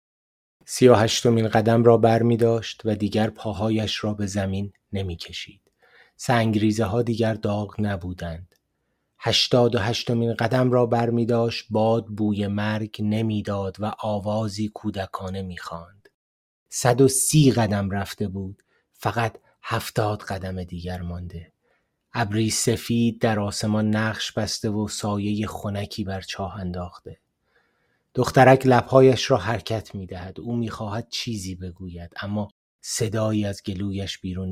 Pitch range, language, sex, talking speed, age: 100-115 Hz, Persian, male, 125 wpm, 30-49